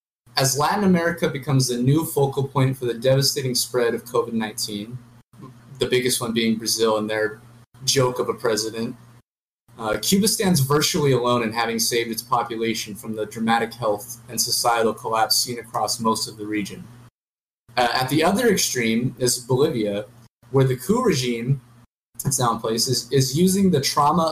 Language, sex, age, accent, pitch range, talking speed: English, male, 30-49, American, 115-140 Hz, 170 wpm